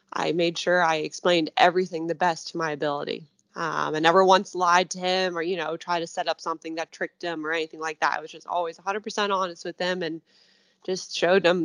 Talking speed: 240 wpm